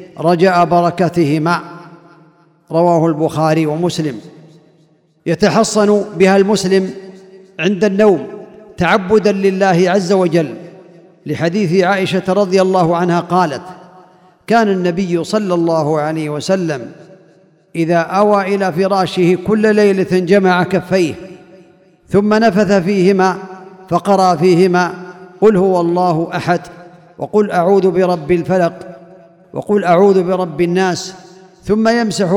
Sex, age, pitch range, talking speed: male, 50-69, 170-190 Hz, 100 wpm